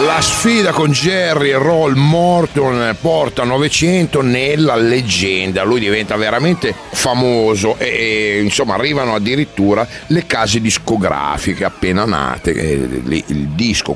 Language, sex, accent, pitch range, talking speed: Italian, male, native, 90-140 Hz, 115 wpm